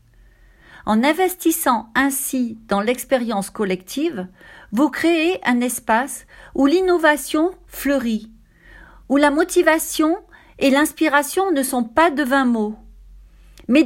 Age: 40-59